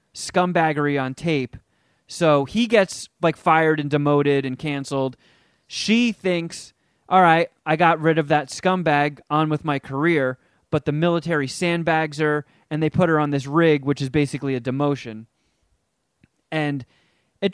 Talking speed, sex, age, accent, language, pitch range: 155 wpm, male, 20-39, American, English, 140-180 Hz